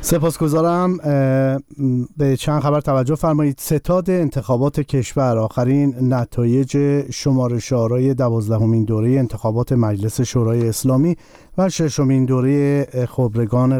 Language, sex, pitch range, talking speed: Persian, male, 120-140 Hz, 100 wpm